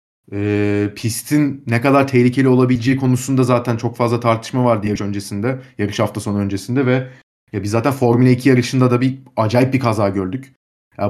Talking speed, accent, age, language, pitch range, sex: 175 wpm, native, 30-49, Turkish, 115-140 Hz, male